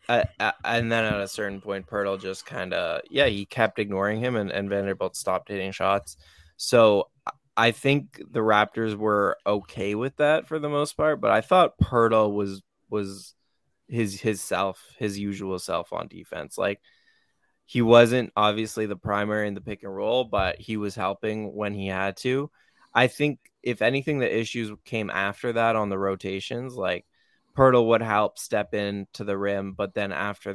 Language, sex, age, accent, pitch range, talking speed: English, male, 10-29, American, 100-120 Hz, 180 wpm